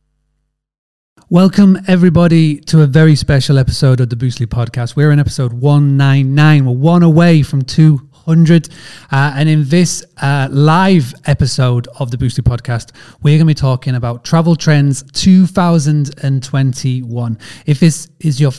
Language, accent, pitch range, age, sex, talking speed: English, British, 130-155 Hz, 30-49, male, 140 wpm